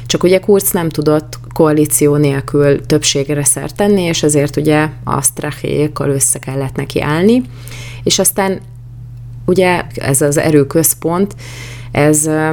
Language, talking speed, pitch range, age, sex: Hungarian, 120 wpm, 140-160 Hz, 30-49, female